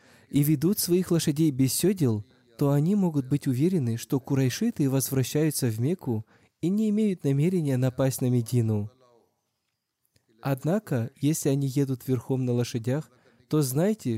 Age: 20-39